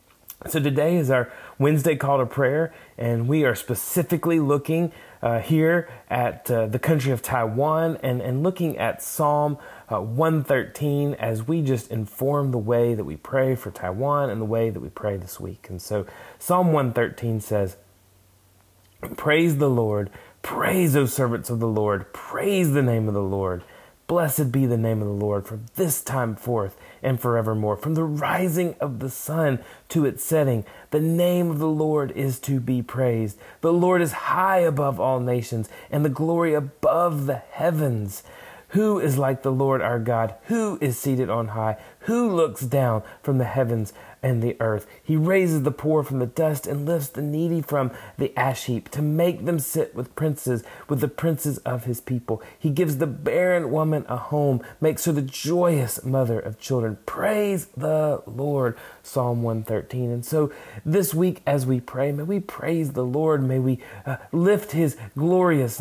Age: 30-49